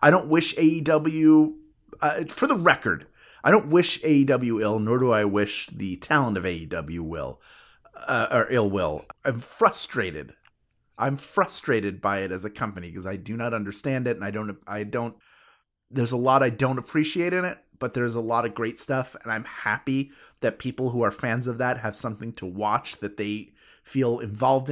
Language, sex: English, male